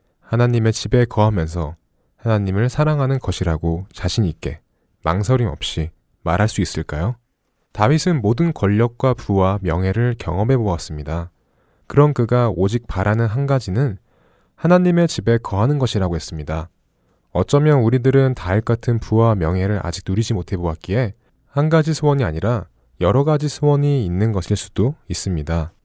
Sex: male